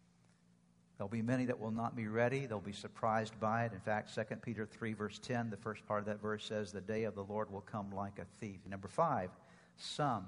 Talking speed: 235 wpm